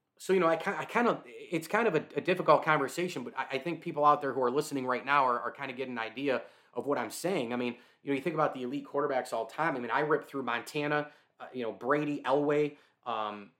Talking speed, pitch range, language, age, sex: 280 wpm, 125-150 Hz, English, 30-49, male